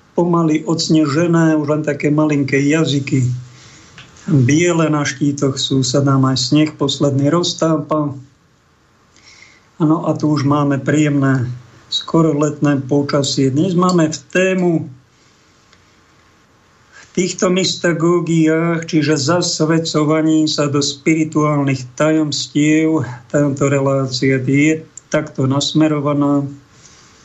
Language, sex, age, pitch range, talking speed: Slovak, male, 50-69, 135-155 Hz, 95 wpm